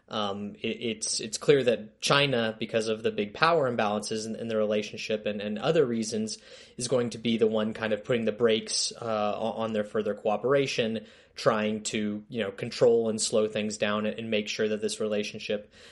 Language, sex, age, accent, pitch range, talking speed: English, male, 20-39, American, 105-115 Hz, 195 wpm